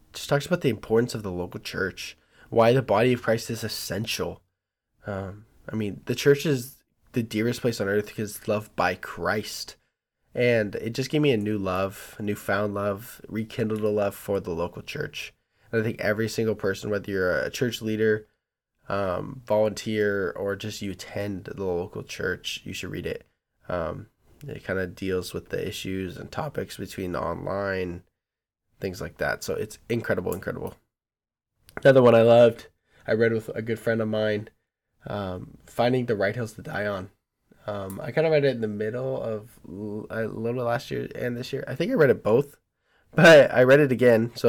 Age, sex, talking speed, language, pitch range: 10-29, male, 195 wpm, English, 100-120 Hz